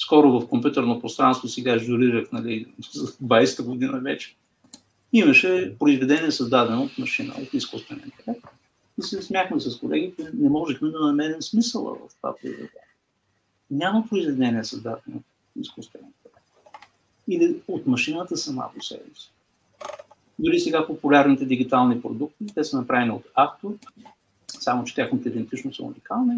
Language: Bulgarian